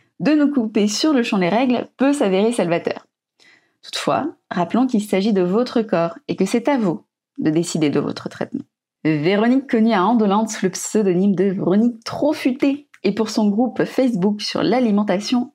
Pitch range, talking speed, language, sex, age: 185-255 Hz, 170 wpm, French, female, 20-39